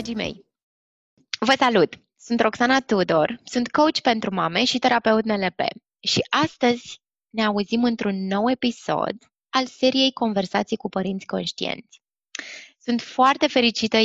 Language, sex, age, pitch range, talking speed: Romanian, female, 20-39, 195-245 Hz, 125 wpm